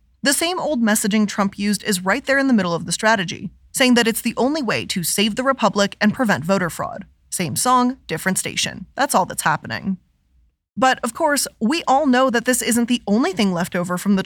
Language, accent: English, American